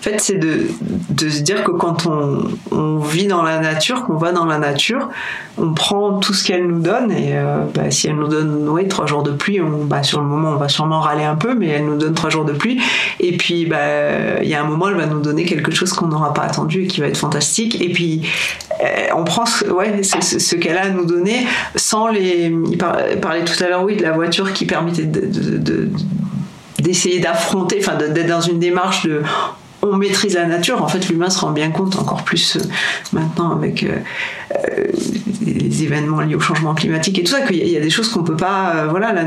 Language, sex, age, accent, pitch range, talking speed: French, female, 40-59, French, 155-190 Hz, 240 wpm